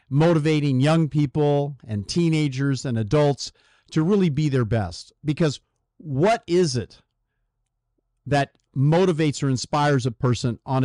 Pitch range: 120-155 Hz